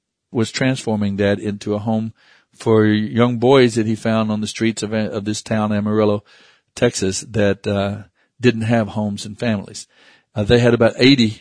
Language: English